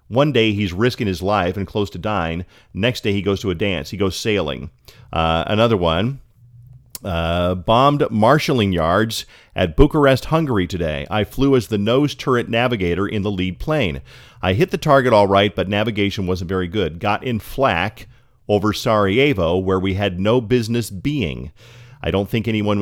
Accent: American